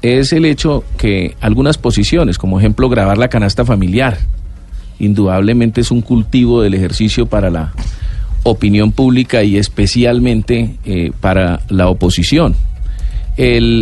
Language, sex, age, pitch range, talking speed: Spanish, male, 40-59, 110-150 Hz, 125 wpm